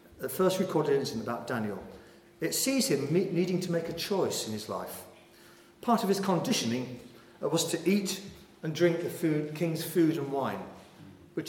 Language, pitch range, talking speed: English, 120-180 Hz, 185 wpm